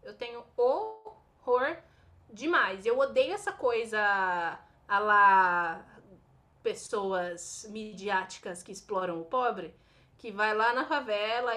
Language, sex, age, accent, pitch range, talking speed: Portuguese, female, 20-39, Brazilian, 215-315 Hz, 110 wpm